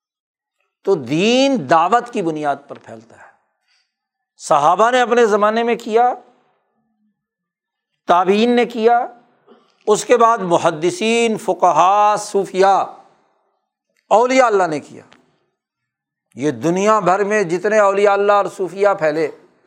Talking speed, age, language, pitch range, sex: 110 wpm, 60-79, Urdu, 175-235 Hz, male